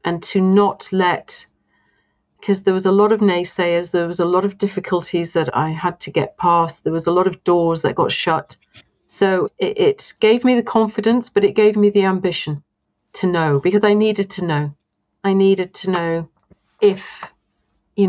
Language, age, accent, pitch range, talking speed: English, 40-59, British, 160-195 Hz, 190 wpm